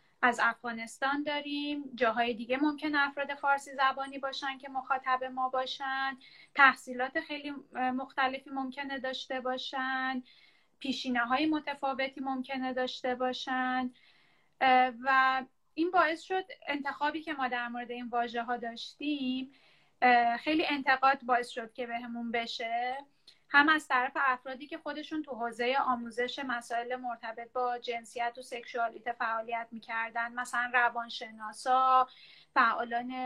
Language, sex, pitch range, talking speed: English, female, 245-280 Hz, 120 wpm